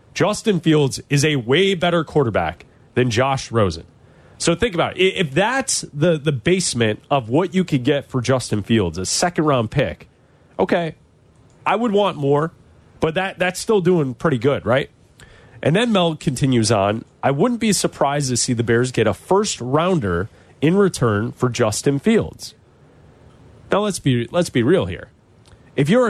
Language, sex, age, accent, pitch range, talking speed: English, male, 30-49, American, 130-190 Hz, 165 wpm